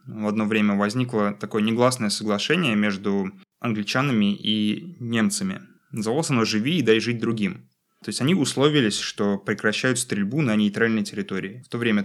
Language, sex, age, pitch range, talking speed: Russian, male, 20-39, 105-135 Hz, 155 wpm